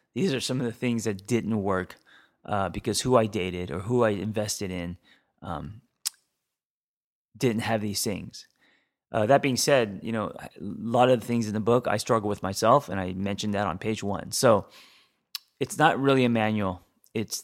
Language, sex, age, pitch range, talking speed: English, male, 30-49, 95-120 Hz, 195 wpm